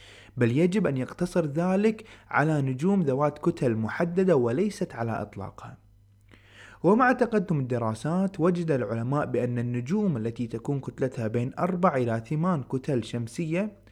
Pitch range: 120-175 Hz